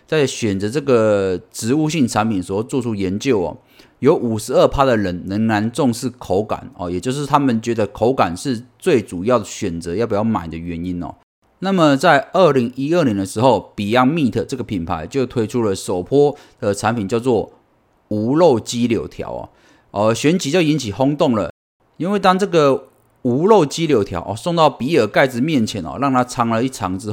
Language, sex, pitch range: Chinese, male, 105-145 Hz